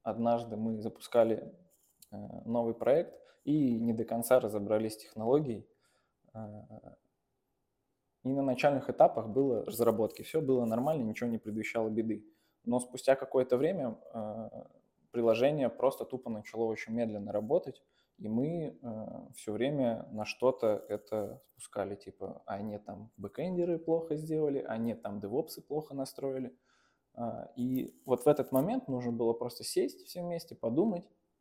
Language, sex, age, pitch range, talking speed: Russian, male, 20-39, 110-135 Hz, 130 wpm